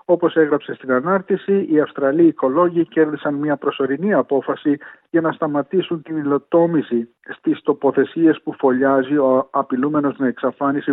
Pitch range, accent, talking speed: 135-165 Hz, native, 130 wpm